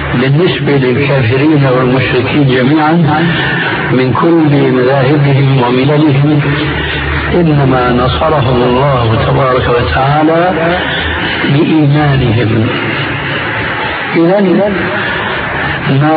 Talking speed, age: 60 wpm, 60-79